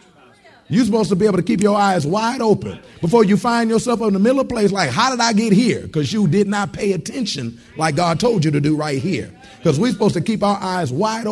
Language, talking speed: English, 255 wpm